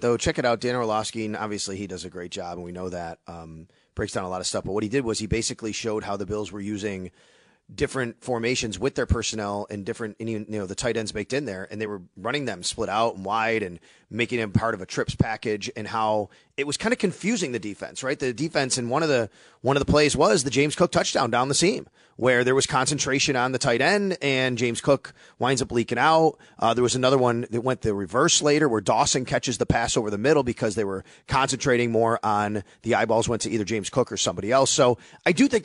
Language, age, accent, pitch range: English, 30-49, American, 110-155 Hz